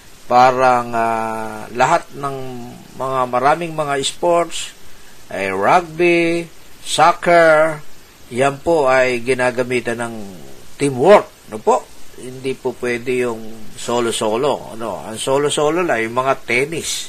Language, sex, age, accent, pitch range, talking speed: Filipino, male, 50-69, native, 120-160 Hz, 110 wpm